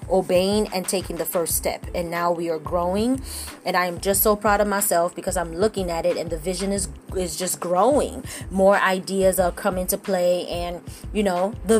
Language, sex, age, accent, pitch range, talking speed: English, female, 20-39, American, 180-220 Hz, 210 wpm